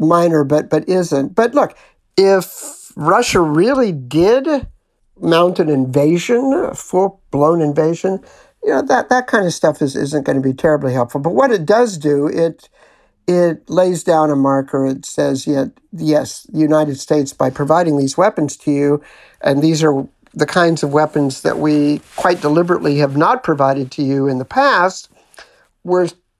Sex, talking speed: male, 175 wpm